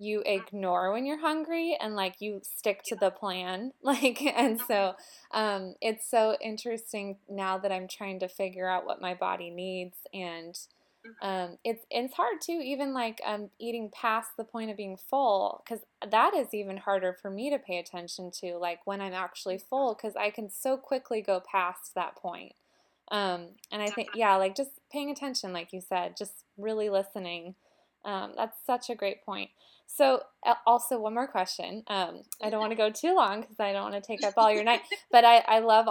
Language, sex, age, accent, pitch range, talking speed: English, female, 20-39, American, 195-245 Hz, 200 wpm